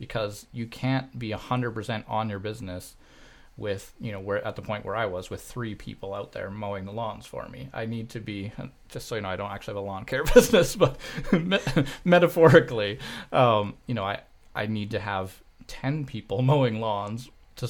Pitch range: 105-130 Hz